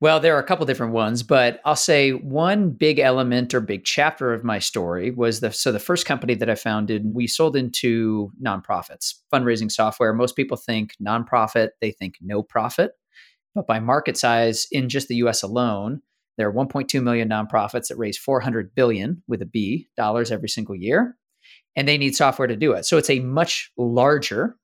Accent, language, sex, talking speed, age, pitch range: American, English, male, 190 wpm, 30-49, 115-140 Hz